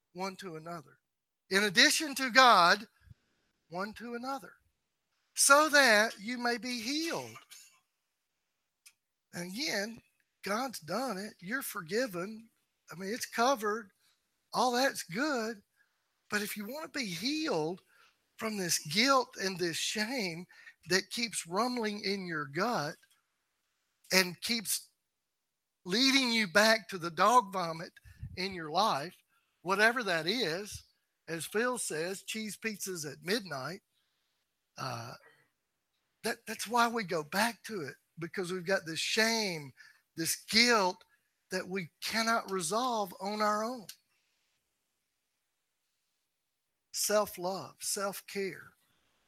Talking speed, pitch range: 115 wpm, 180-230 Hz